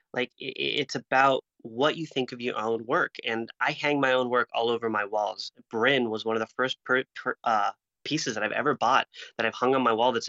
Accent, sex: American, male